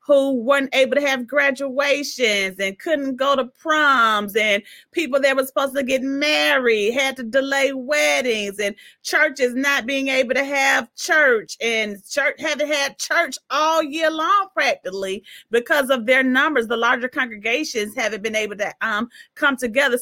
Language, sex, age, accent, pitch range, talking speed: English, female, 30-49, American, 255-310 Hz, 165 wpm